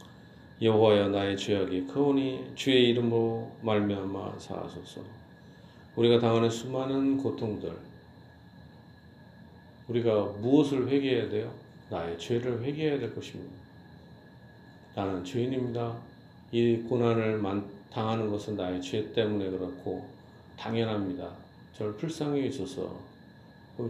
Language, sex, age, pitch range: Korean, male, 40-59, 100-130 Hz